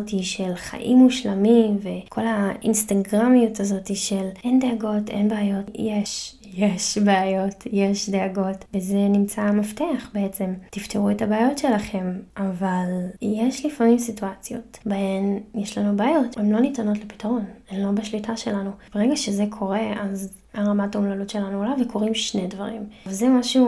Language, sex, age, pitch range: Hebrew, female, 10-29, 195-230 Hz